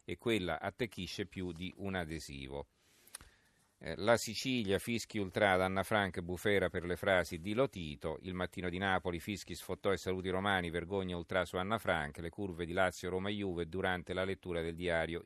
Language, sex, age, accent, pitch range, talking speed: Italian, male, 40-59, native, 90-105 Hz, 175 wpm